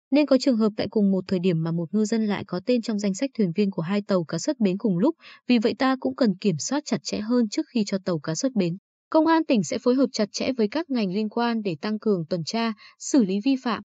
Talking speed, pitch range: 290 wpm, 190-250 Hz